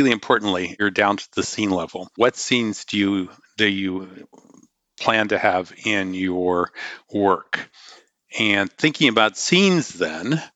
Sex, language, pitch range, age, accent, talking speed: male, English, 100-125 Hz, 50-69, American, 140 wpm